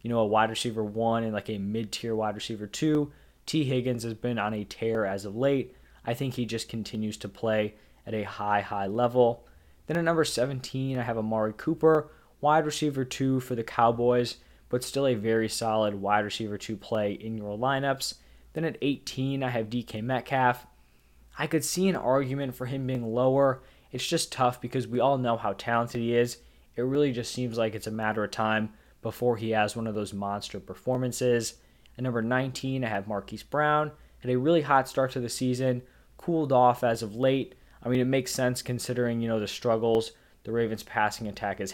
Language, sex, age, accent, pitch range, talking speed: English, male, 20-39, American, 110-130 Hz, 205 wpm